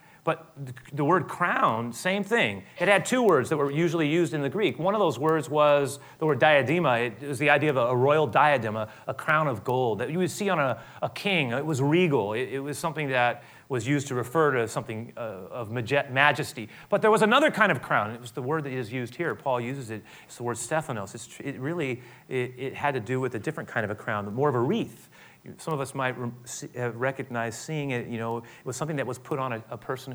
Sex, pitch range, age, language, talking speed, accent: male, 120-150 Hz, 30-49, English, 235 wpm, American